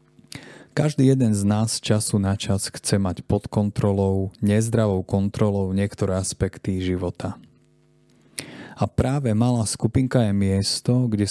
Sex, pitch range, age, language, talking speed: male, 100-120 Hz, 30-49, Slovak, 120 wpm